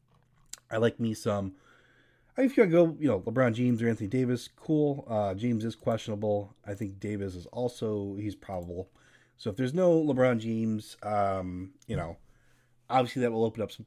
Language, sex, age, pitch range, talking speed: English, male, 30-49, 95-120 Hz, 180 wpm